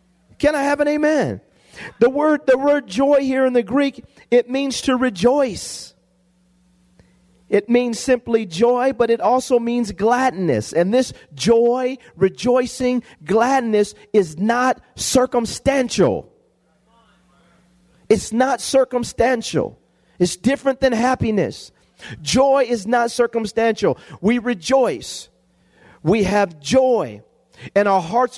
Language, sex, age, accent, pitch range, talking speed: English, male, 40-59, American, 180-250 Hz, 110 wpm